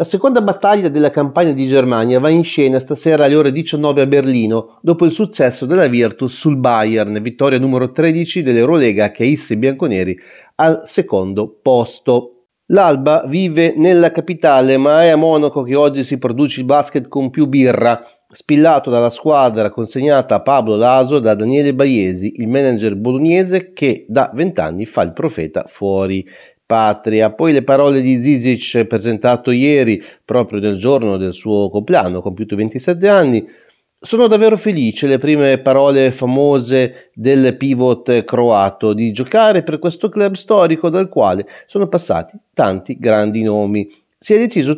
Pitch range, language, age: 115-165 Hz, Italian, 30-49